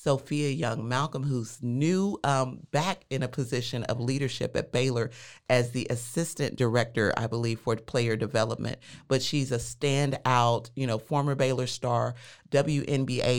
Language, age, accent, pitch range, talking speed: English, 30-49, American, 120-145 Hz, 150 wpm